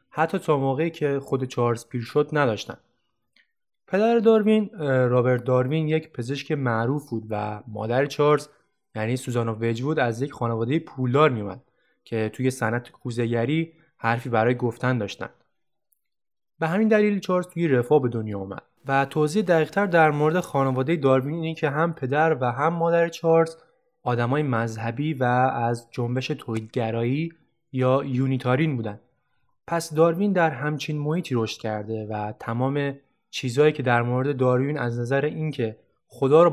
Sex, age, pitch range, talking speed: male, 20-39, 120-155 Hz, 145 wpm